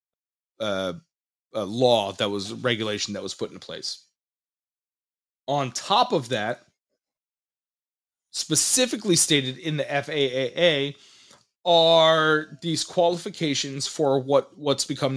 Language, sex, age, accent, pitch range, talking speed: English, male, 30-49, American, 125-160 Hz, 110 wpm